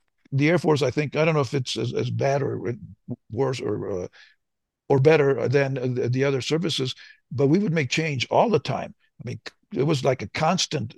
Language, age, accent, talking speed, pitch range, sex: English, 60-79, American, 210 wpm, 130-150 Hz, male